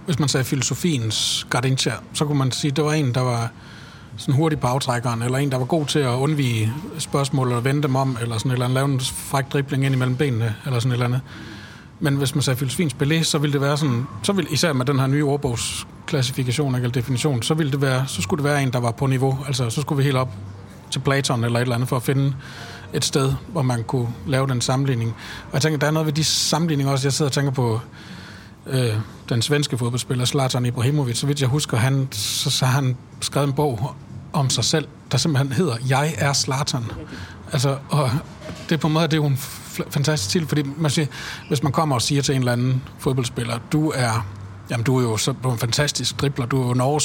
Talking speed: 240 wpm